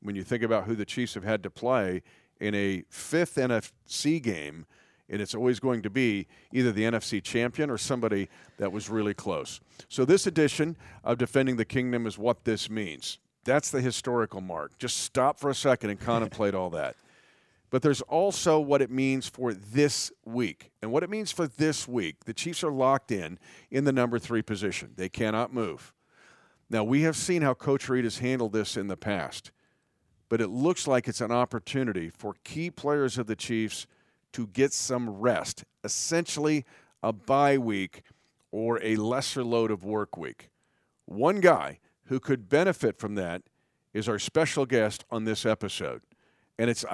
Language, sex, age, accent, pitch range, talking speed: English, male, 50-69, American, 105-135 Hz, 180 wpm